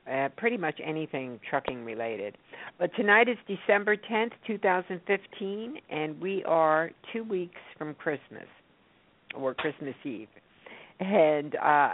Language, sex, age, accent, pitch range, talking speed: English, female, 60-79, American, 135-170 Hz, 115 wpm